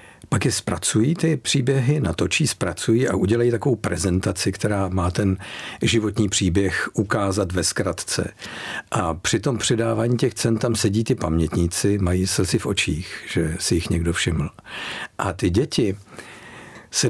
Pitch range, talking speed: 95-120 Hz, 145 wpm